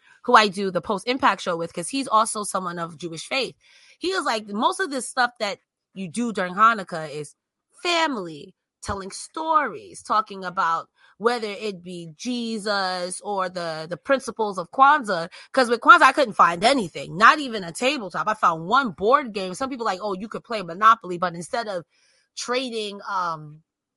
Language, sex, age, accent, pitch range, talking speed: English, female, 20-39, American, 190-270 Hz, 180 wpm